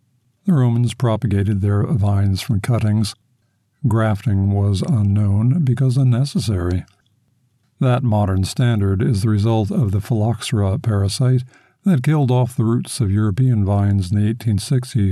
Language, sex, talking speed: English, male, 125 wpm